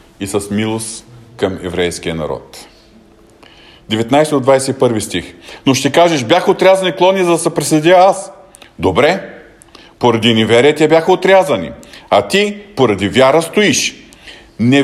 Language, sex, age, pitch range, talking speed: Bulgarian, male, 50-69, 125-180 Hz, 125 wpm